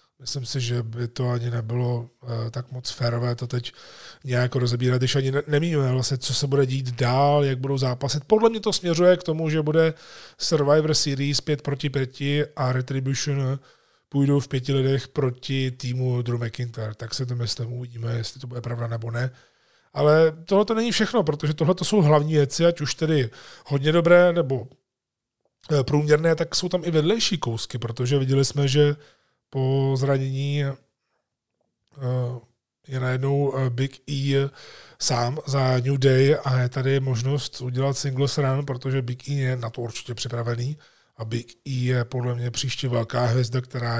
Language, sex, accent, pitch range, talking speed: Czech, male, native, 125-145 Hz, 170 wpm